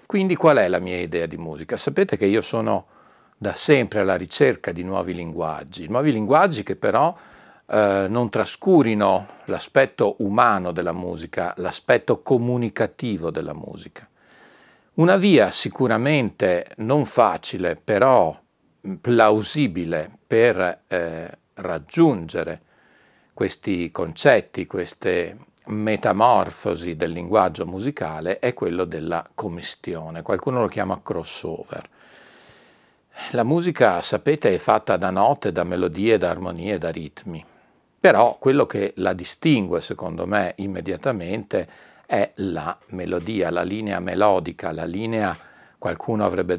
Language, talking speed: Italian, 115 wpm